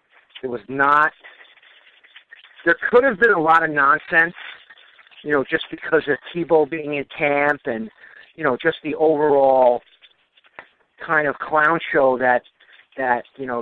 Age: 50-69